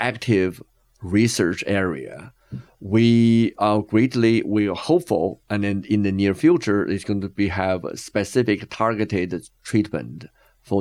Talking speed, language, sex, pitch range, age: 140 wpm, English, male, 95-110 Hz, 50-69